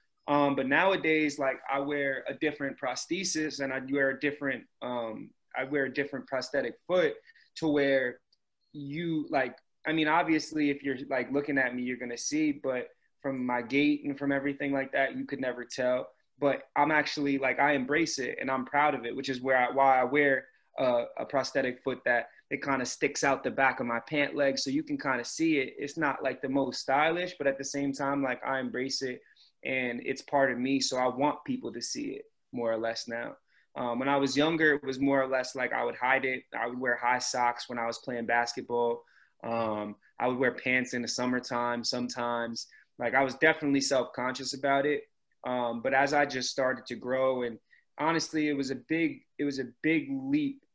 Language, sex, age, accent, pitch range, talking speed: English, male, 20-39, American, 125-145 Hz, 215 wpm